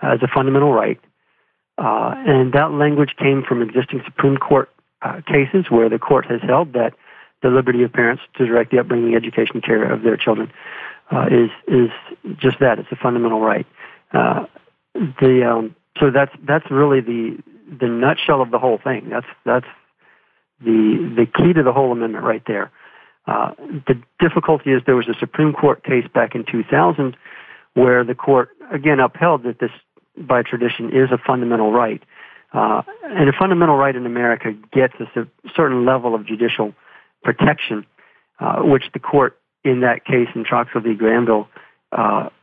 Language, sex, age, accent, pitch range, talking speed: English, male, 50-69, American, 115-140 Hz, 170 wpm